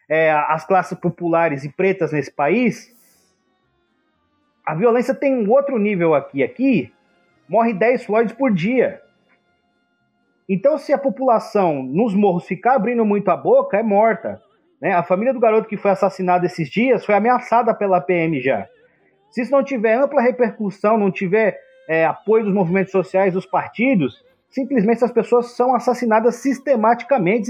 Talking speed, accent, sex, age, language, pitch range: 145 wpm, Brazilian, male, 30-49, Portuguese, 185-250 Hz